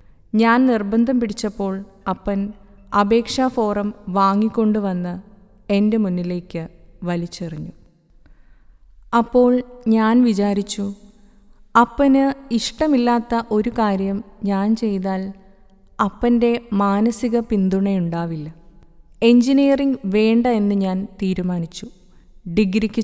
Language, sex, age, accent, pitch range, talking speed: Malayalam, female, 20-39, native, 185-235 Hz, 75 wpm